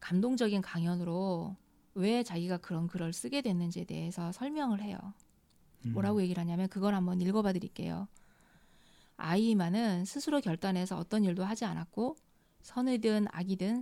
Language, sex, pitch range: Korean, female, 180-220 Hz